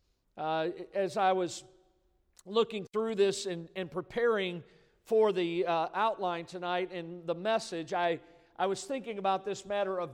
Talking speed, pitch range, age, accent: 155 wpm, 180-215 Hz, 50-69, American